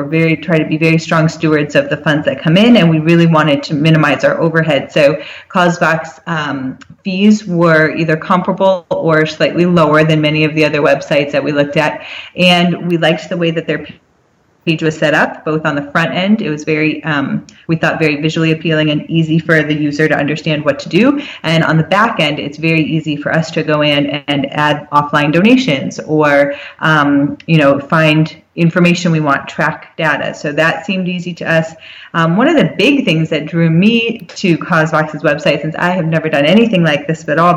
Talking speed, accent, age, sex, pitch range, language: 210 wpm, American, 30-49, female, 150-175 Hz, English